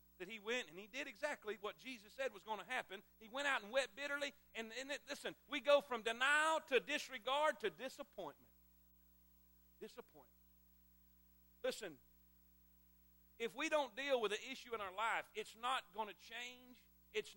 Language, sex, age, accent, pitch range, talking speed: English, male, 40-59, American, 200-265 Hz, 175 wpm